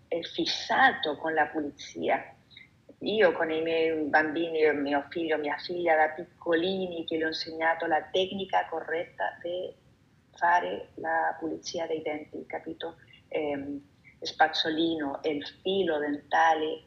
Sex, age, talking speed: female, 30-49, 130 wpm